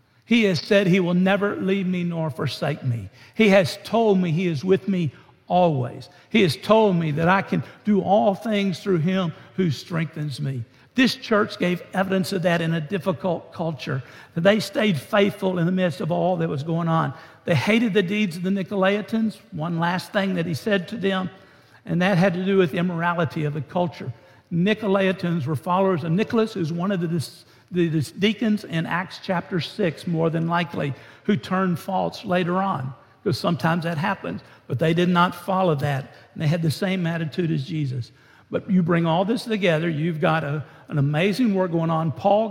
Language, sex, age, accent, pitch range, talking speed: English, male, 60-79, American, 165-195 Hz, 200 wpm